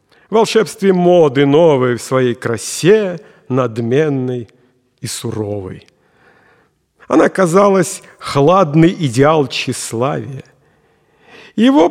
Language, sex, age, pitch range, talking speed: Russian, male, 50-69, 130-180 Hz, 75 wpm